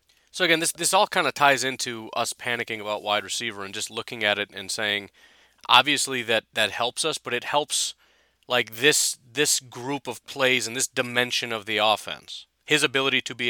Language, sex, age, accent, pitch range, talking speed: English, male, 30-49, American, 115-140 Hz, 200 wpm